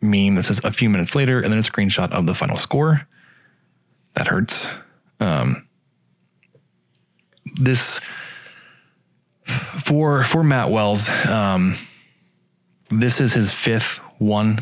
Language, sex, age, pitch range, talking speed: English, male, 20-39, 100-130 Hz, 120 wpm